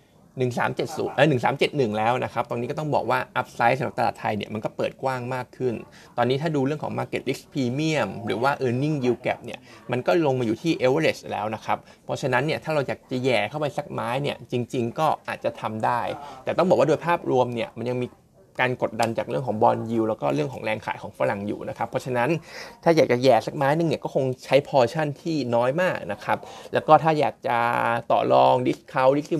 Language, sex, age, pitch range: Thai, male, 20-39, 120-150 Hz